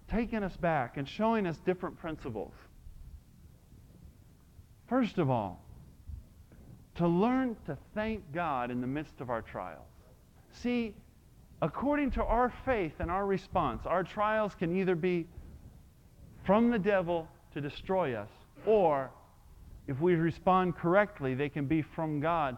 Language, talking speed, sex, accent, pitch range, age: English, 135 wpm, male, American, 155-225 Hz, 40-59